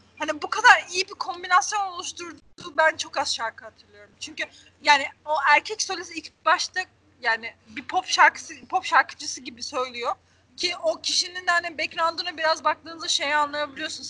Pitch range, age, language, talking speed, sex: 300-390 Hz, 30-49, Turkish, 155 wpm, female